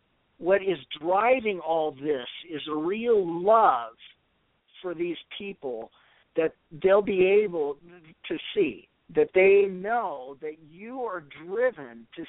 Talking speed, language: 125 wpm, English